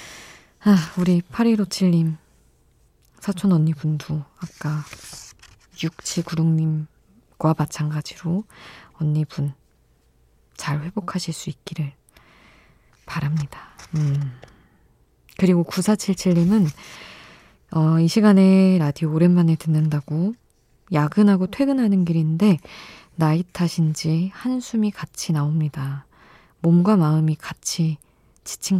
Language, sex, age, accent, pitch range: Korean, female, 20-39, native, 150-185 Hz